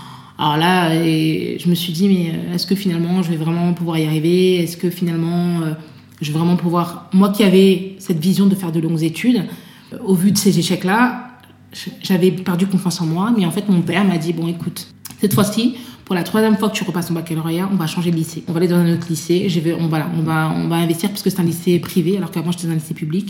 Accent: French